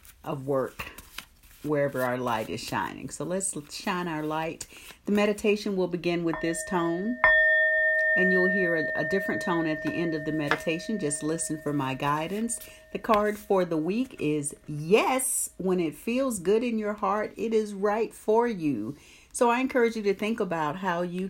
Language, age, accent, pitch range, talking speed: English, 40-59, American, 150-215 Hz, 185 wpm